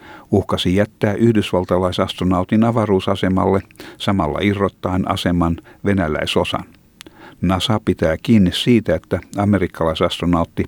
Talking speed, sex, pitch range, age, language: 80 wpm, male, 90-105 Hz, 60-79, Finnish